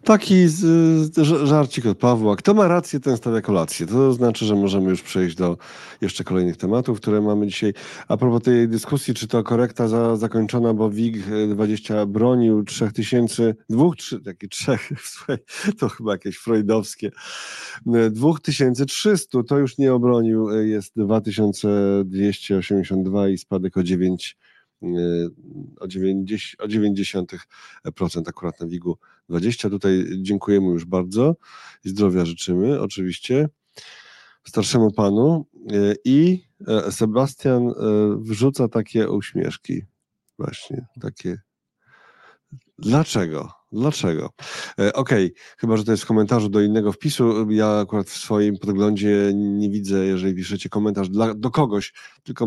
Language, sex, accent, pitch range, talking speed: Polish, male, native, 100-125 Hz, 120 wpm